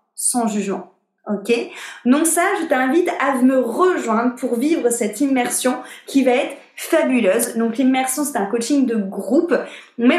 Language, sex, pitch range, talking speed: French, female, 225-290 Hz, 155 wpm